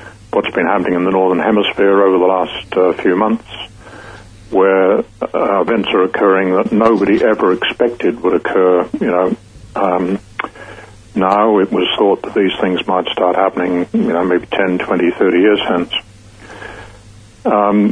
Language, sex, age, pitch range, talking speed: English, male, 60-79, 95-105 Hz, 155 wpm